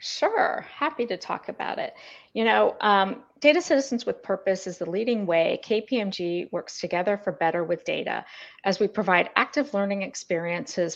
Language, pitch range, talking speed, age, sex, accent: English, 180-225 Hz, 165 wpm, 40-59, female, American